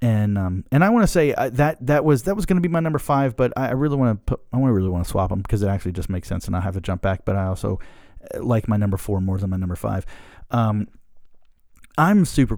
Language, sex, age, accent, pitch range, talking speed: English, male, 30-49, American, 105-120 Hz, 270 wpm